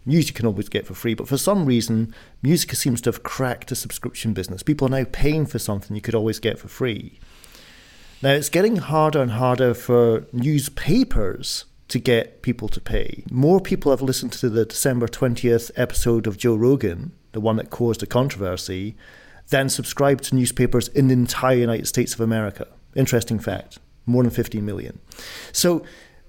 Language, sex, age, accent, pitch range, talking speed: English, male, 40-59, British, 115-140 Hz, 185 wpm